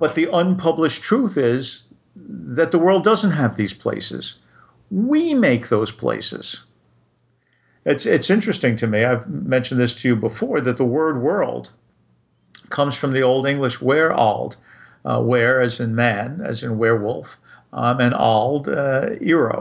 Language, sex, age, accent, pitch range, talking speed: English, male, 50-69, American, 120-155 Hz, 155 wpm